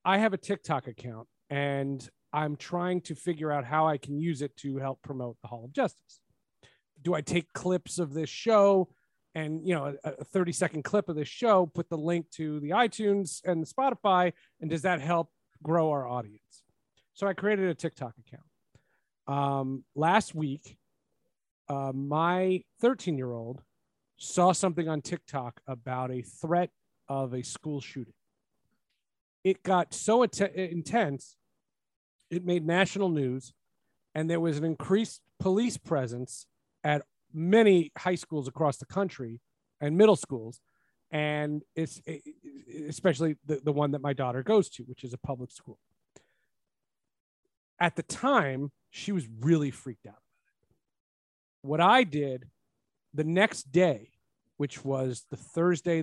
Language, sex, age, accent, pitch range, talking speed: English, male, 40-59, American, 135-180 Hz, 150 wpm